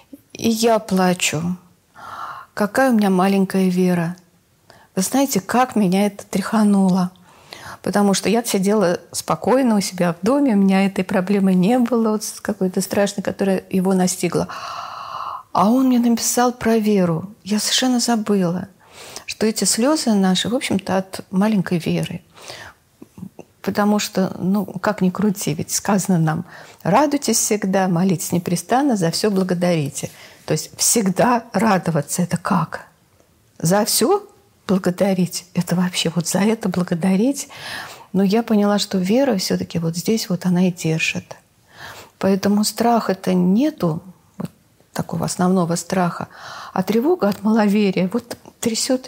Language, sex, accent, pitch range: Russian, female, native, 180-220 Hz